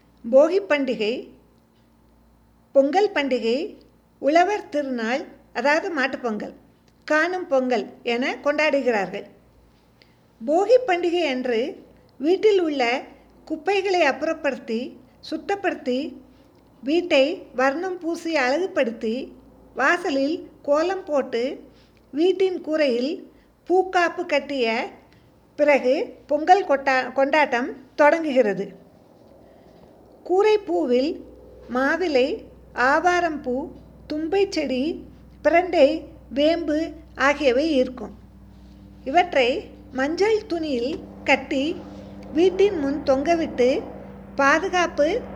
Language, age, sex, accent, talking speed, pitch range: Tamil, 50-69, female, native, 70 wpm, 260-340 Hz